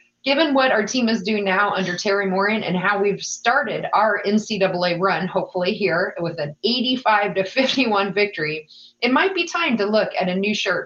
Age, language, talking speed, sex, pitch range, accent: 30-49, English, 195 wpm, female, 180-230 Hz, American